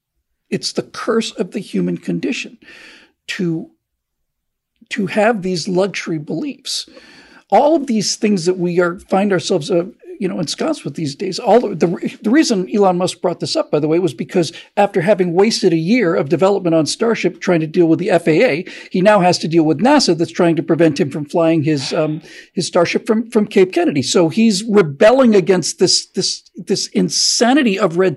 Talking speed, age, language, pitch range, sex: 195 wpm, 50-69, English, 175-225 Hz, male